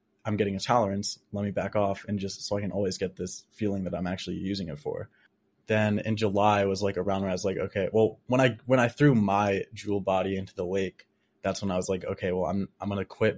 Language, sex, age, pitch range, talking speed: English, male, 20-39, 95-100 Hz, 260 wpm